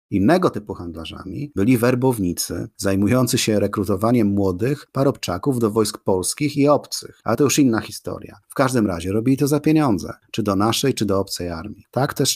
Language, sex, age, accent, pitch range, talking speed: Polish, male, 30-49, native, 90-115 Hz, 175 wpm